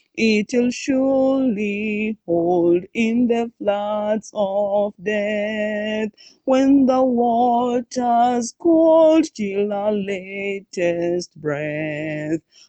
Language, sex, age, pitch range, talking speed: English, female, 30-49, 210-300 Hz, 75 wpm